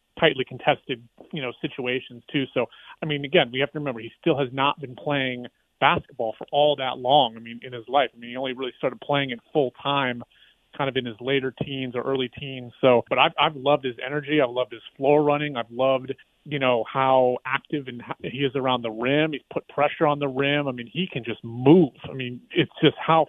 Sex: male